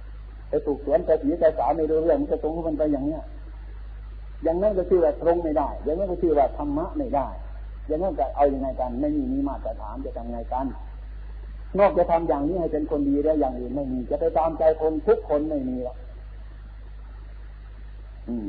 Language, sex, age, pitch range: Thai, male, 50-69, 130-195 Hz